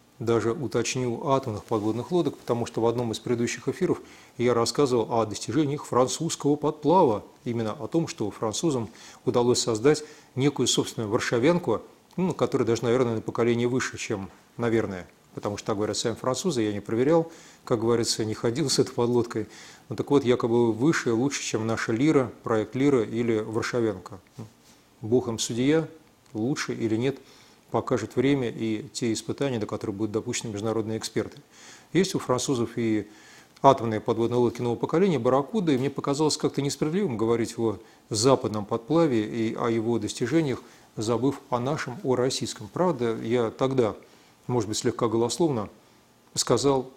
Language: Russian